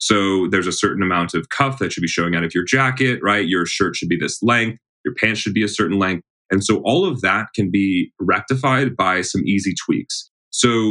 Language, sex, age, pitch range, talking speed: English, male, 30-49, 95-125 Hz, 230 wpm